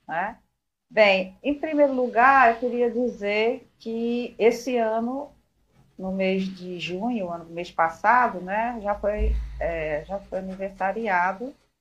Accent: Brazilian